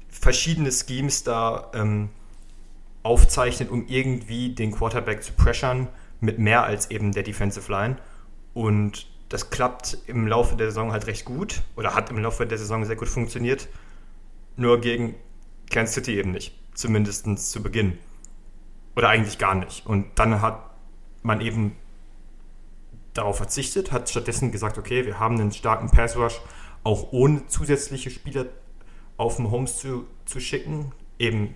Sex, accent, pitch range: male, German, 100-120 Hz